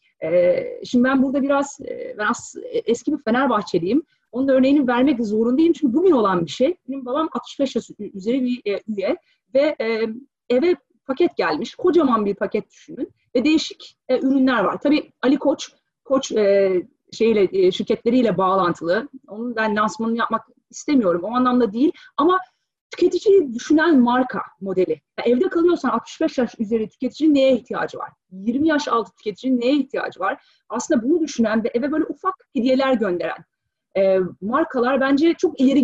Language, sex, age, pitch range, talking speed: Turkish, female, 30-49, 220-305 Hz, 140 wpm